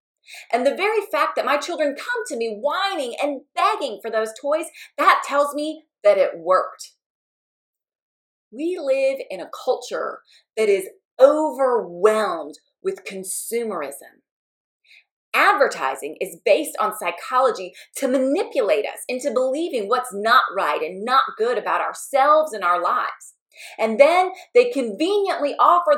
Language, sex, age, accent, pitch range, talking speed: English, female, 30-49, American, 245-355 Hz, 135 wpm